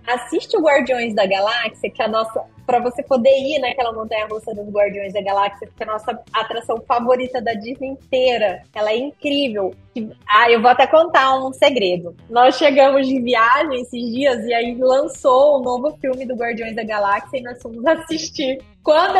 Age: 20-39